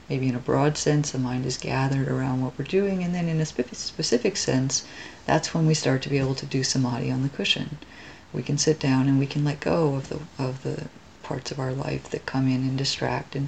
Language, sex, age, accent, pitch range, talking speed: English, female, 40-59, American, 135-150 Hz, 245 wpm